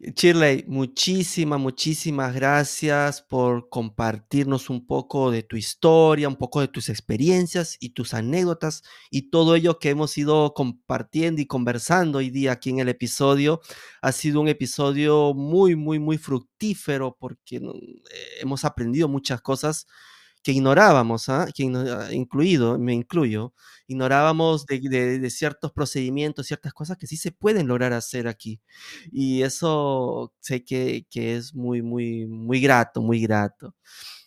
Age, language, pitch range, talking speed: 30-49, Spanish, 125-165 Hz, 140 wpm